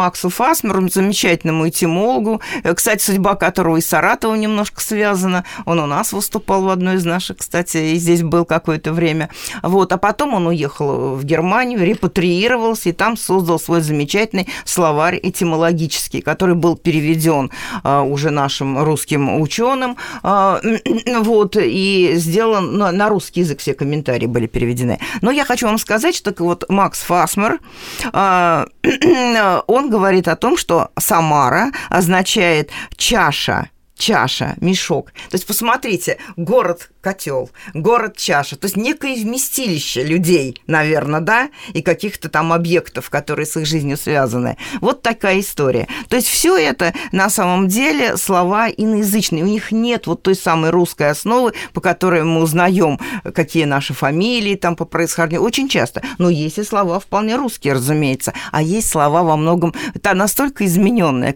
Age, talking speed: 40-59, 145 wpm